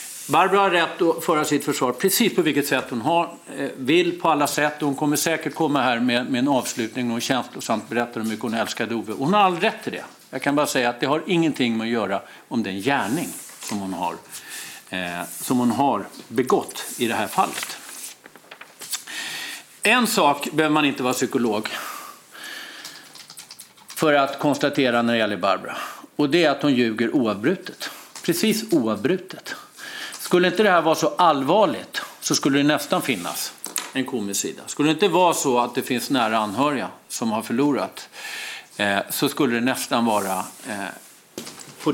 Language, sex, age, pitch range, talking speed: Swedish, male, 50-69, 120-170 Hz, 180 wpm